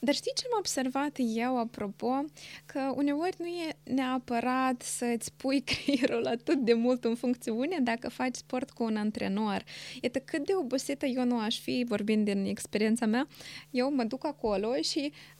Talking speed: 170 wpm